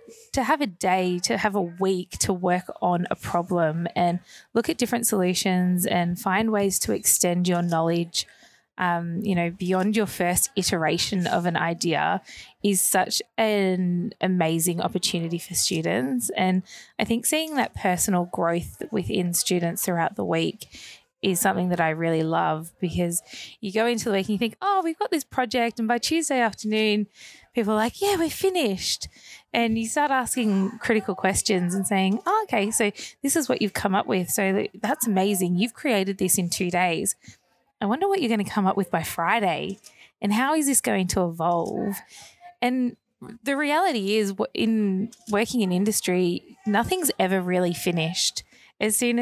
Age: 20-39